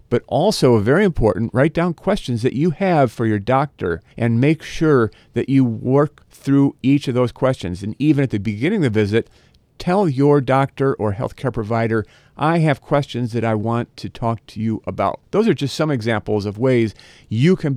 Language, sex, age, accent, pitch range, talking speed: English, male, 50-69, American, 115-145 Hz, 195 wpm